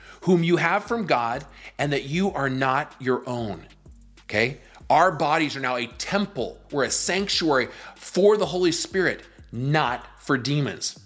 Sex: male